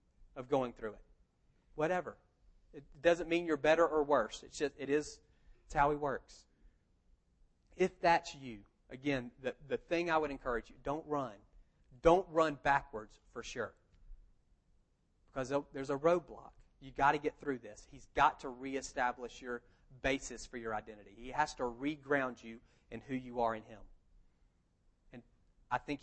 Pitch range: 110-140 Hz